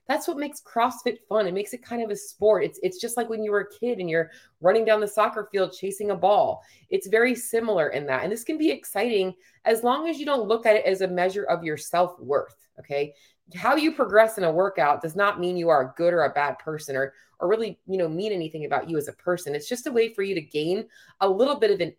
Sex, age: female, 30-49